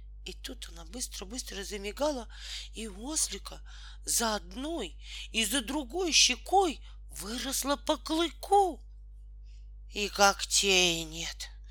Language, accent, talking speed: Russian, native, 95 wpm